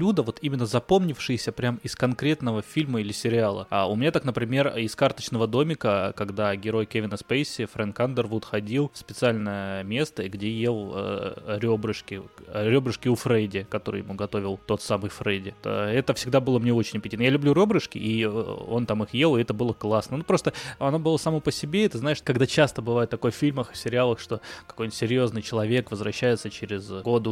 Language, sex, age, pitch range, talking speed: Russian, male, 20-39, 105-130 Hz, 180 wpm